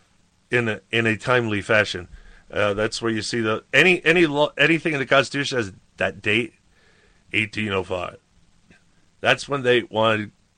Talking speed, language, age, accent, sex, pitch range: 175 wpm, English, 40-59, American, male, 105-140 Hz